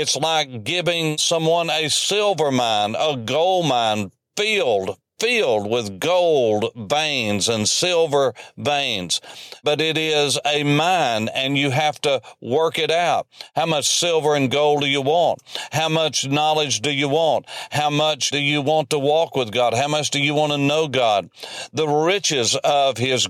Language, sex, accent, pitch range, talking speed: English, male, American, 140-170 Hz, 165 wpm